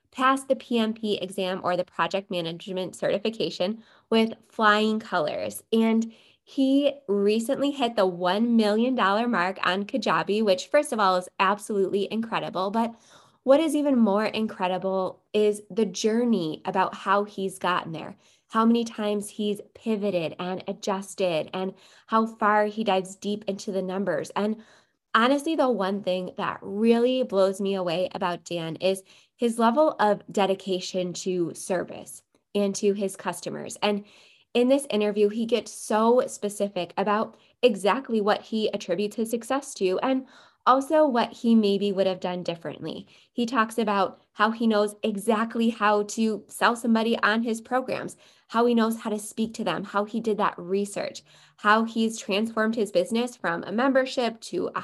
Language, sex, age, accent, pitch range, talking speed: English, female, 20-39, American, 190-230 Hz, 160 wpm